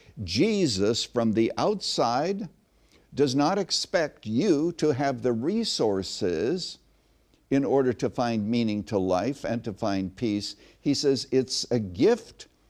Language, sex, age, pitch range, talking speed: English, male, 60-79, 100-140 Hz, 130 wpm